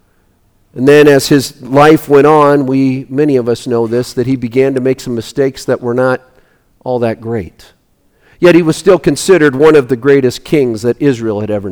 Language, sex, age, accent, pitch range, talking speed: English, male, 50-69, American, 130-170 Hz, 205 wpm